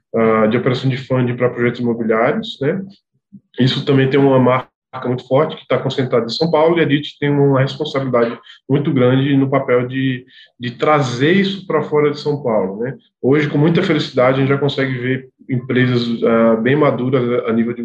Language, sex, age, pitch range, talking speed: Portuguese, male, 20-39, 125-145 Hz, 190 wpm